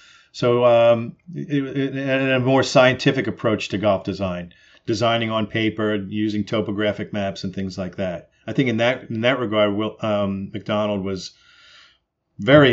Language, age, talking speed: English, 40-59, 155 wpm